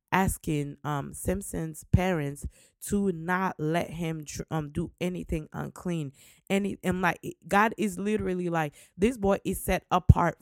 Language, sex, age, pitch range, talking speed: English, female, 20-39, 155-185 Hz, 140 wpm